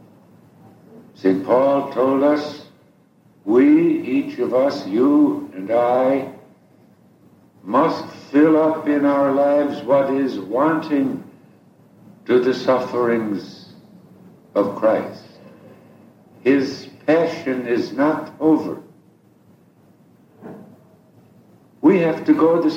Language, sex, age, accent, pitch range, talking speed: English, male, 60-79, American, 135-180 Hz, 90 wpm